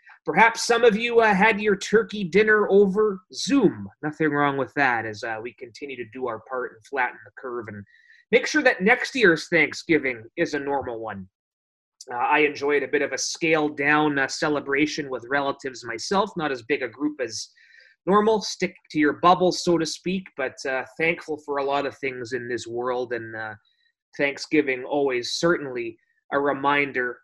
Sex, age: male, 30-49